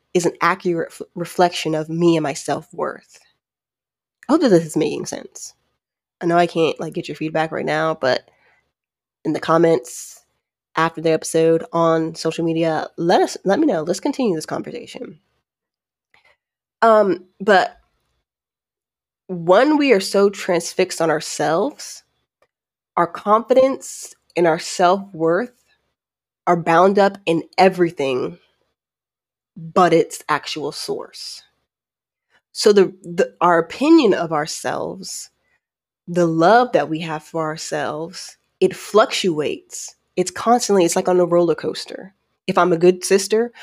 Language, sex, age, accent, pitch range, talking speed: English, female, 20-39, American, 160-200 Hz, 135 wpm